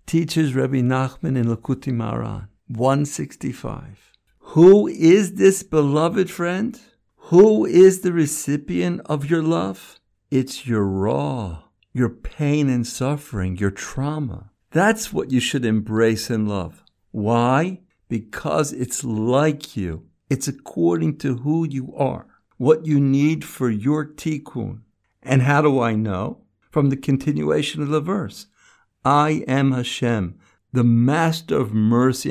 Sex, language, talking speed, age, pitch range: male, English, 130 wpm, 60-79, 110-150 Hz